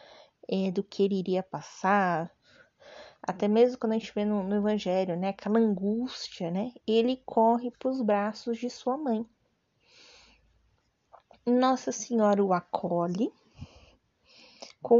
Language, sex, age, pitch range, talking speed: Portuguese, female, 20-39, 190-240 Hz, 125 wpm